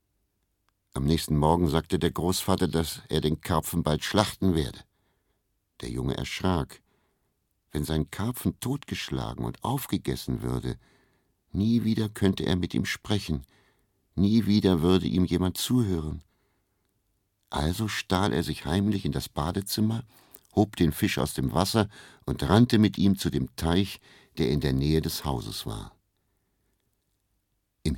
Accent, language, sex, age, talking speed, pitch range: German, German, male, 60-79, 140 wpm, 80-105 Hz